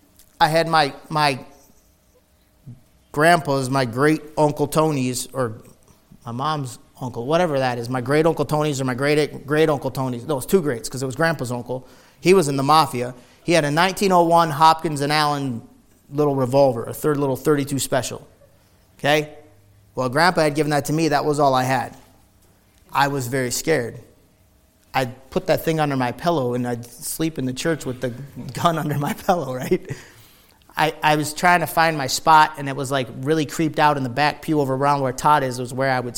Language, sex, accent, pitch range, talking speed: English, male, American, 130-150 Hz, 200 wpm